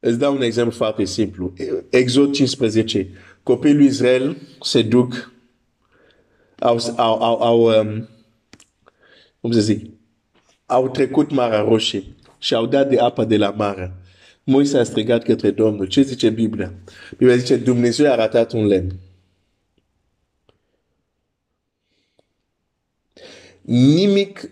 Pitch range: 100-135 Hz